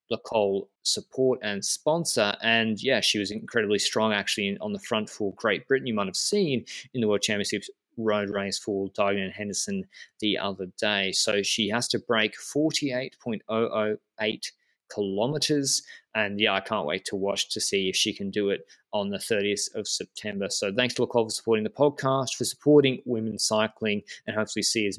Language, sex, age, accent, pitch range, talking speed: English, male, 20-39, Australian, 100-125 Hz, 180 wpm